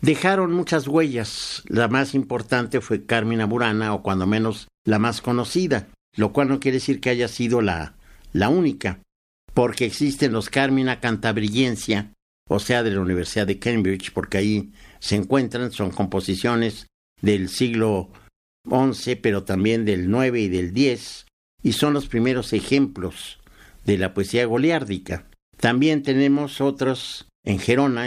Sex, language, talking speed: male, Spanish, 145 wpm